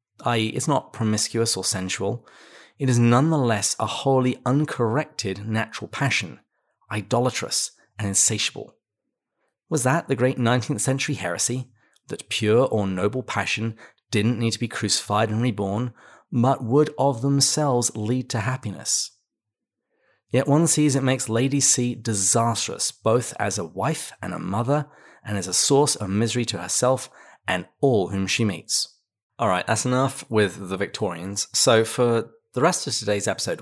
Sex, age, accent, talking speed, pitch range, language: male, 30-49, British, 150 wpm, 100-130 Hz, English